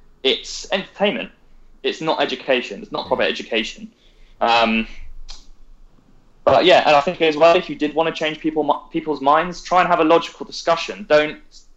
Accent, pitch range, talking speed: British, 130-165 Hz, 170 wpm